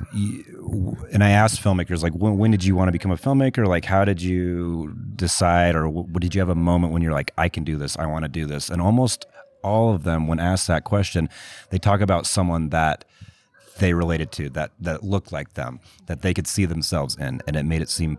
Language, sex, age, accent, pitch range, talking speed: English, male, 30-49, American, 80-105 Hz, 235 wpm